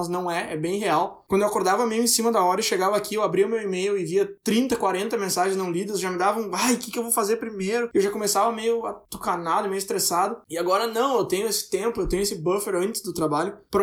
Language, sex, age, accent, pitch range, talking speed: Portuguese, male, 20-39, Brazilian, 180-235 Hz, 275 wpm